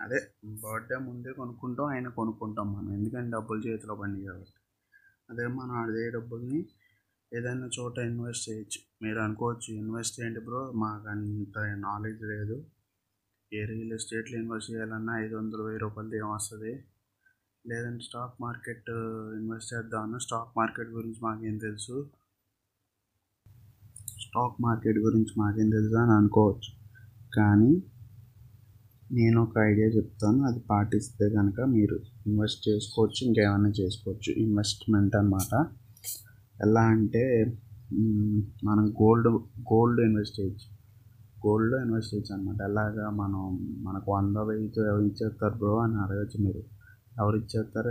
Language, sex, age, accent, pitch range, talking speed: Telugu, male, 20-39, native, 105-115 Hz, 95 wpm